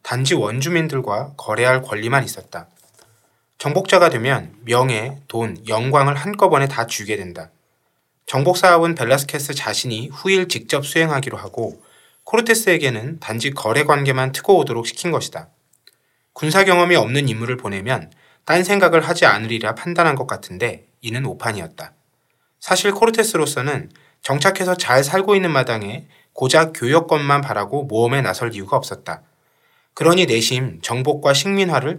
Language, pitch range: Korean, 120-170 Hz